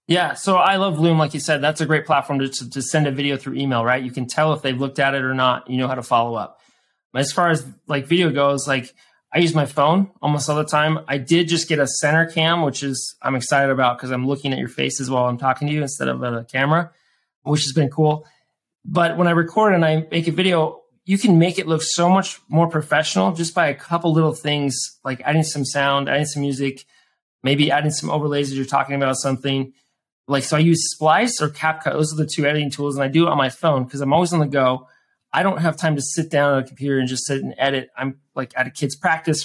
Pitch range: 135-160 Hz